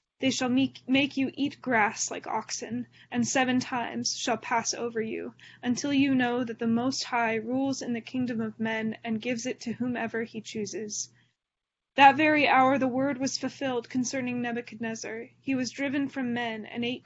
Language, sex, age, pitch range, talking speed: English, female, 20-39, 230-255 Hz, 185 wpm